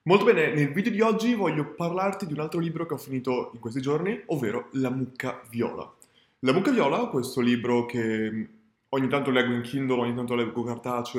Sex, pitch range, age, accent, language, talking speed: male, 120-145 Hz, 20-39, native, Italian, 200 wpm